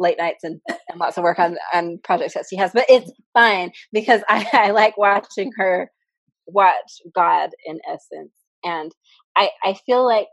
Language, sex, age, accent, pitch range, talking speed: English, female, 20-39, American, 180-225 Hz, 180 wpm